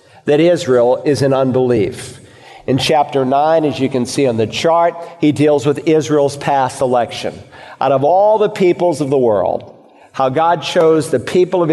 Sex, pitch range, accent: male, 130-165 Hz, American